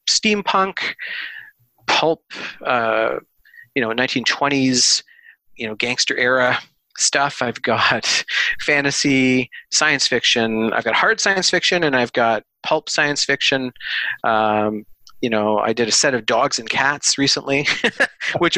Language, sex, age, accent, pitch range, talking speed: English, male, 30-49, American, 120-155 Hz, 130 wpm